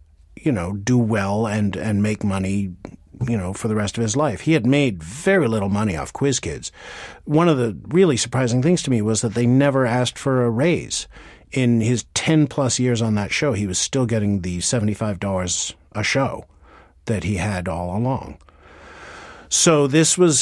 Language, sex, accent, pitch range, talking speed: English, male, American, 95-125 Hz, 190 wpm